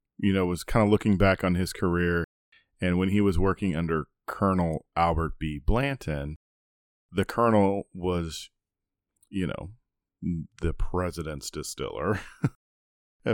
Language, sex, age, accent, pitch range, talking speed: English, male, 30-49, American, 85-105 Hz, 130 wpm